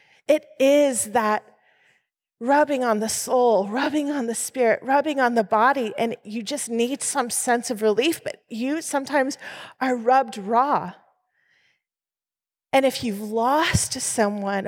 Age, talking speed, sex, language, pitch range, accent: 30-49, 140 wpm, female, English, 210-260 Hz, American